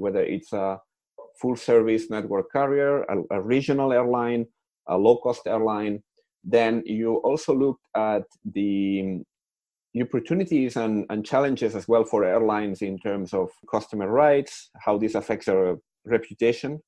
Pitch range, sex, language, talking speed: 100-125 Hz, male, English, 140 wpm